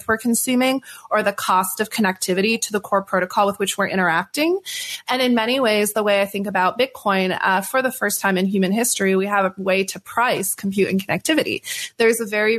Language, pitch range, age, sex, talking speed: English, 195-220 Hz, 30-49, female, 215 wpm